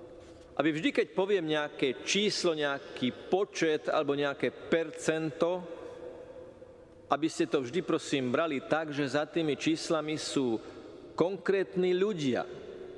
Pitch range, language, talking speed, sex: 135-180 Hz, Slovak, 115 wpm, male